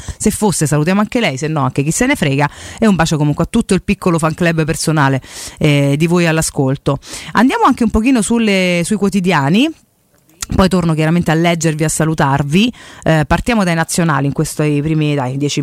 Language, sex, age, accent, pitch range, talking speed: Italian, female, 30-49, native, 145-175 Hz, 190 wpm